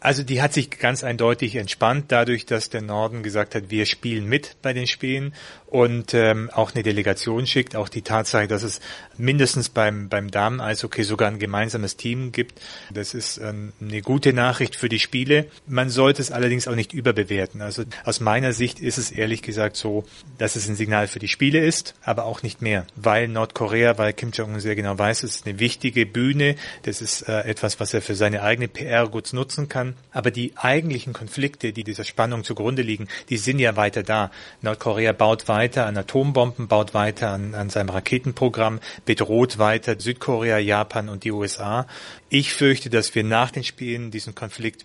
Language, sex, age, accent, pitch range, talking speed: German, male, 30-49, German, 105-125 Hz, 195 wpm